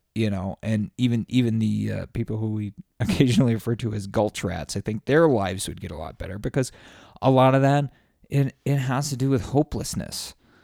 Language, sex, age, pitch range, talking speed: English, male, 30-49, 95-130 Hz, 210 wpm